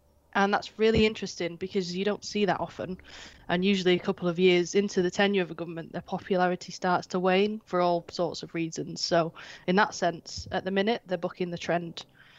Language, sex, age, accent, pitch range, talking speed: English, female, 10-29, British, 175-200 Hz, 210 wpm